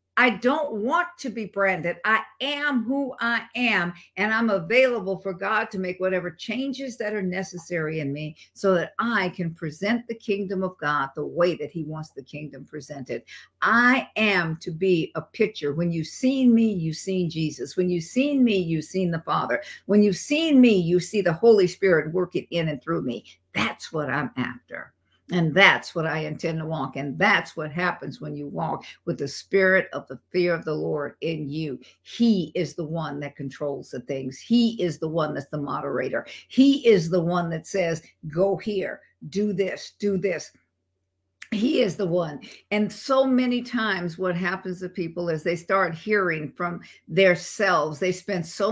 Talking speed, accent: 190 wpm, American